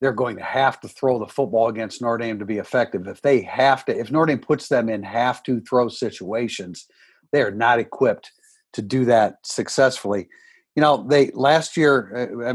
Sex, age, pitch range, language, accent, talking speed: male, 50-69, 125-150 Hz, English, American, 200 wpm